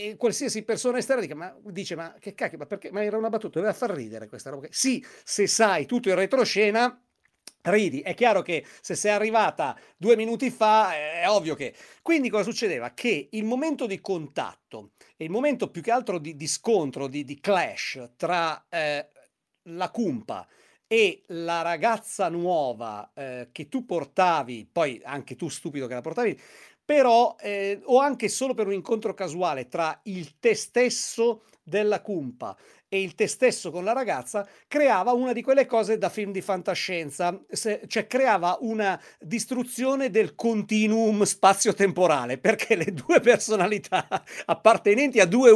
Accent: native